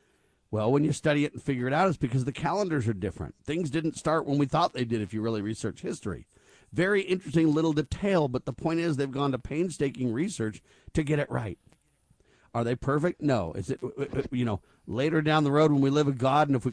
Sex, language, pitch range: male, English, 130-160 Hz